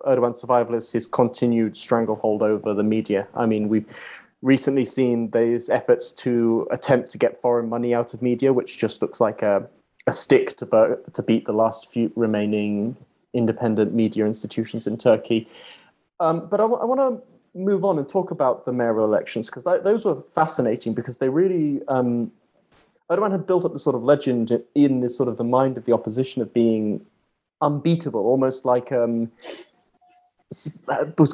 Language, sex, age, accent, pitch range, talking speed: English, male, 20-39, British, 120-165 Hz, 175 wpm